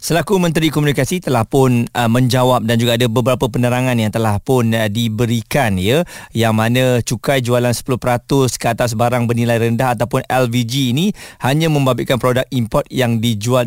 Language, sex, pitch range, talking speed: Malay, male, 115-150 Hz, 160 wpm